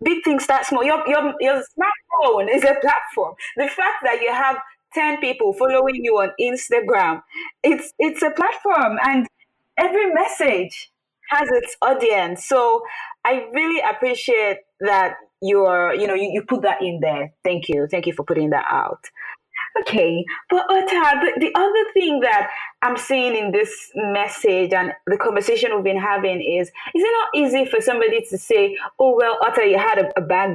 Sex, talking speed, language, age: female, 175 wpm, English, 20-39